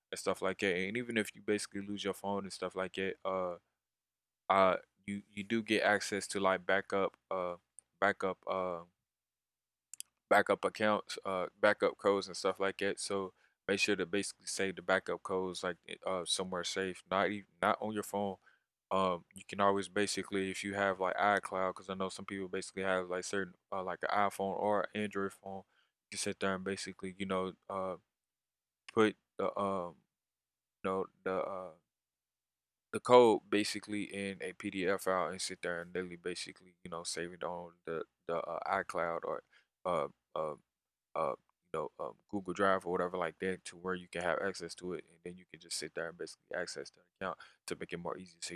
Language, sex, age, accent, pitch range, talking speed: English, male, 20-39, American, 90-100 Hz, 200 wpm